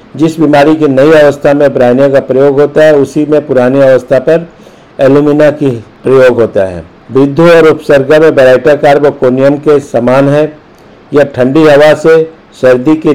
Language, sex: Hindi, male